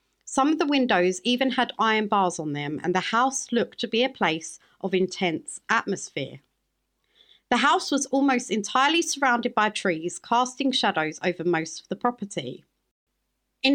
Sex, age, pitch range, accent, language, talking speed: female, 40-59, 185-260 Hz, British, English, 160 wpm